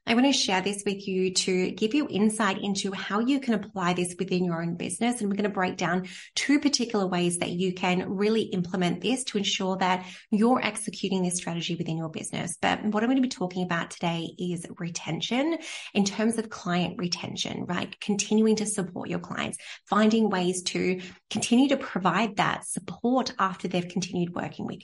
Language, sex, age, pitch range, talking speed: English, female, 20-39, 185-235 Hz, 195 wpm